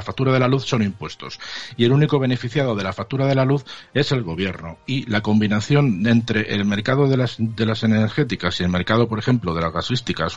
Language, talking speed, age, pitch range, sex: Spanish, 220 wpm, 50-69, 95-115 Hz, male